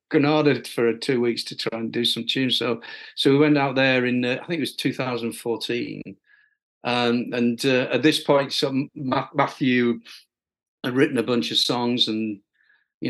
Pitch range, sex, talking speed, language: 110-120 Hz, male, 180 wpm, English